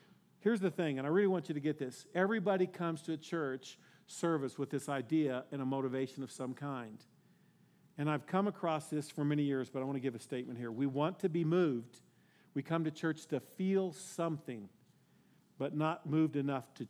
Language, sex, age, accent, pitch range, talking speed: English, male, 50-69, American, 140-190 Hz, 210 wpm